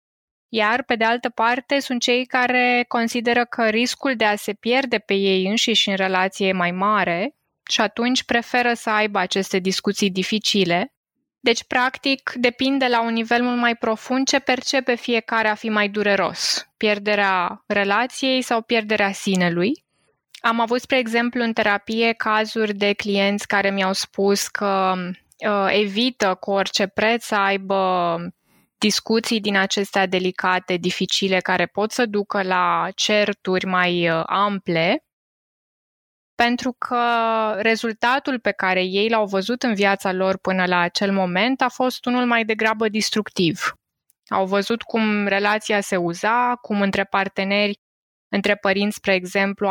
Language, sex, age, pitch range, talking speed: Romanian, female, 20-39, 195-235 Hz, 145 wpm